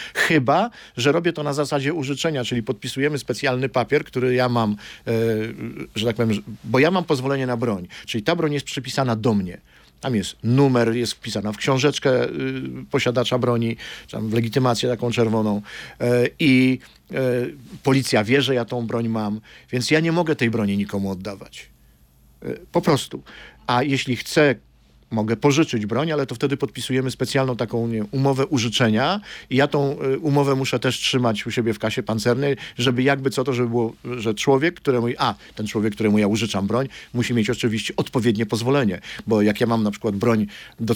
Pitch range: 110-135 Hz